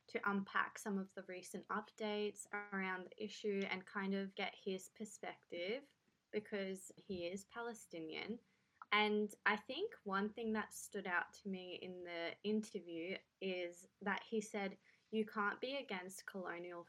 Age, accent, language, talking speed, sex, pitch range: 20-39, Australian, English, 150 wpm, female, 180-210 Hz